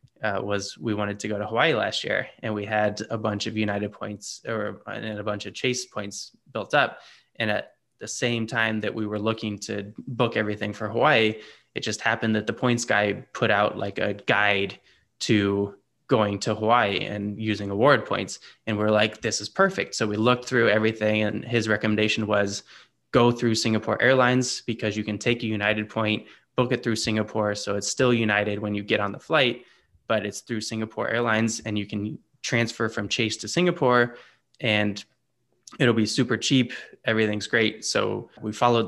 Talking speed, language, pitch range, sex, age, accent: 190 wpm, English, 105-120 Hz, male, 20-39, American